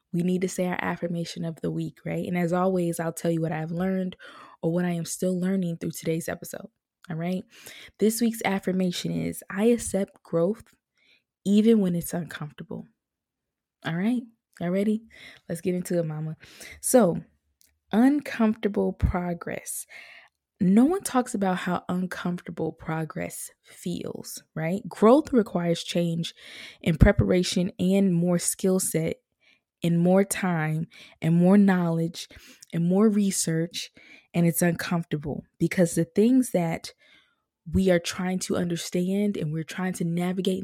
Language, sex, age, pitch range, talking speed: English, female, 20-39, 165-195 Hz, 145 wpm